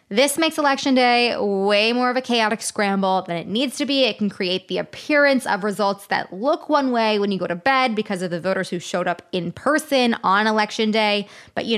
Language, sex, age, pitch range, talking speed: English, female, 20-39, 185-245 Hz, 230 wpm